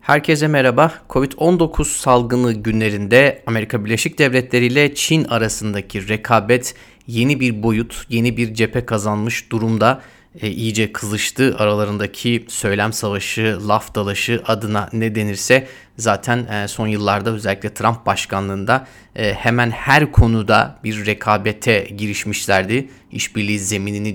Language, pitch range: Turkish, 105-125 Hz